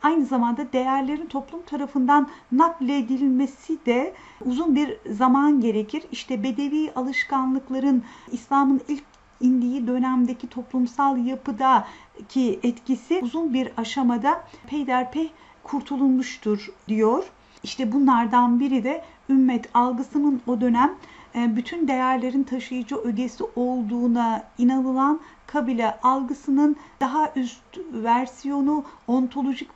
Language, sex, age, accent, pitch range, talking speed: Turkish, female, 50-69, native, 250-290 Hz, 95 wpm